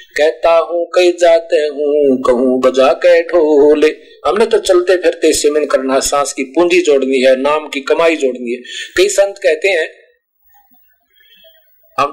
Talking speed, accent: 135 wpm, native